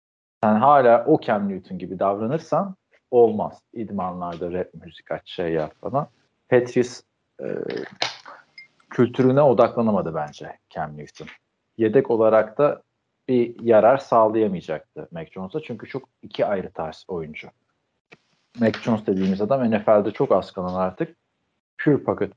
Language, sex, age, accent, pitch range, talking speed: Turkish, male, 40-59, native, 85-120 Hz, 120 wpm